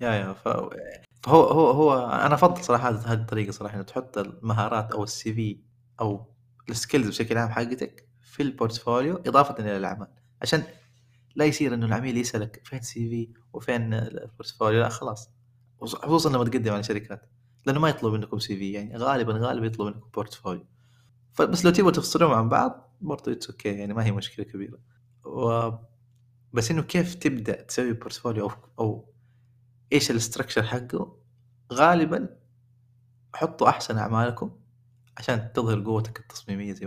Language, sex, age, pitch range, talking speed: Arabic, male, 20-39, 110-125 Hz, 150 wpm